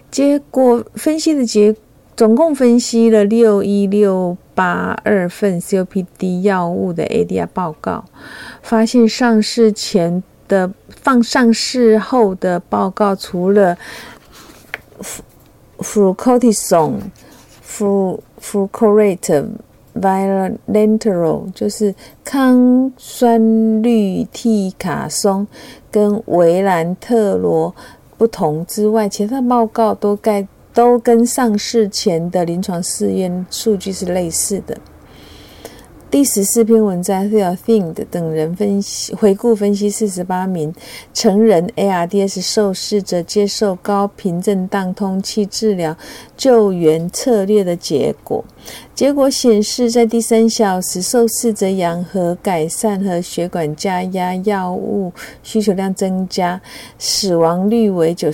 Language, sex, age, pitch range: Chinese, female, 50-69, 185-225 Hz